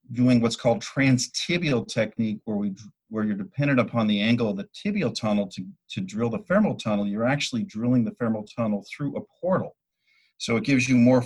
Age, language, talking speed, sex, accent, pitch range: 50-69, English, 195 wpm, male, American, 105-145 Hz